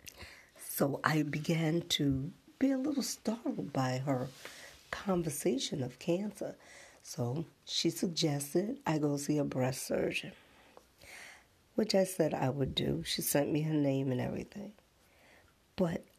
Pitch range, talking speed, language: 140-190 Hz, 135 wpm, English